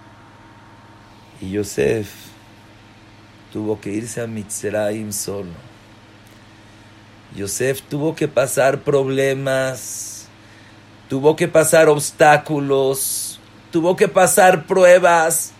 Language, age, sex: English, 50-69, male